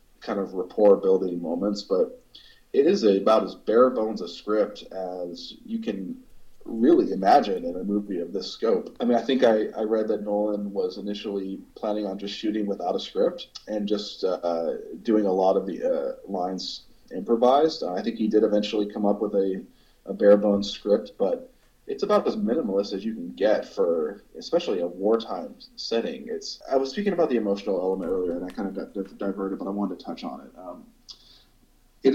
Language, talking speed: English, 190 wpm